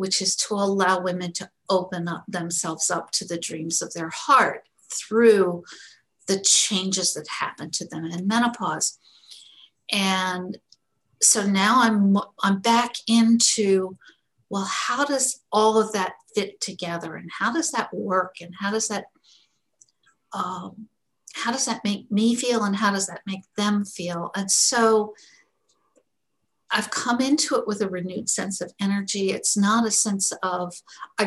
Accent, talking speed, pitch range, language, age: American, 155 wpm, 185-220 Hz, English, 50-69